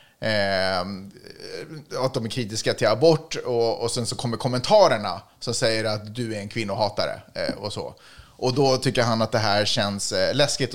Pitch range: 110-150 Hz